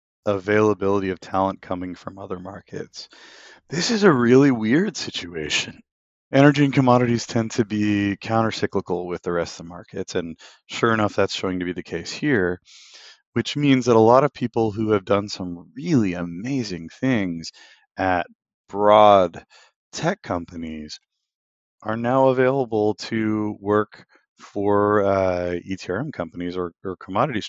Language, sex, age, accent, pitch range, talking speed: English, male, 30-49, American, 90-120 Hz, 145 wpm